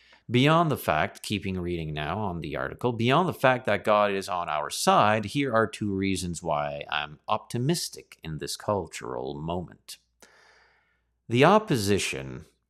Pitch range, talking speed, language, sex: 85-125 Hz, 145 wpm, English, male